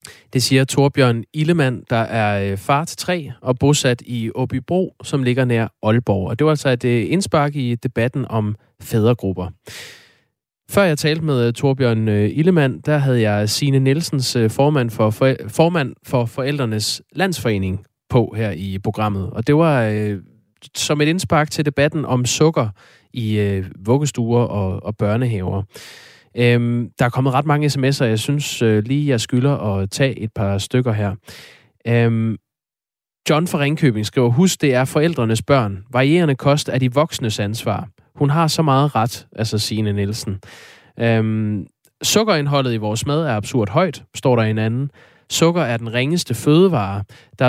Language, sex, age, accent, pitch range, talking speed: Danish, male, 20-39, native, 110-145 Hz, 155 wpm